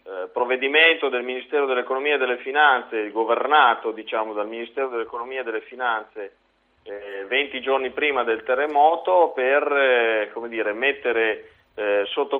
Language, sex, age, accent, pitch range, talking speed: Italian, male, 40-59, native, 115-145 Hz, 135 wpm